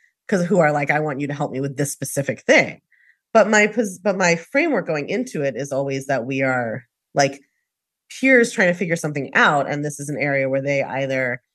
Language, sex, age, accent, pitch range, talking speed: English, female, 30-49, American, 140-175 Hz, 220 wpm